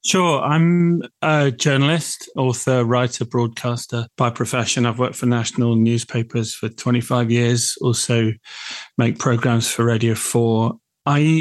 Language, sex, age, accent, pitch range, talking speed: English, male, 30-49, British, 115-135 Hz, 125 wpm